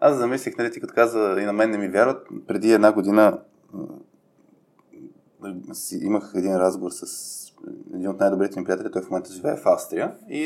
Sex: male